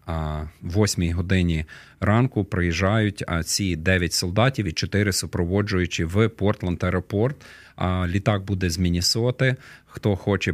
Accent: native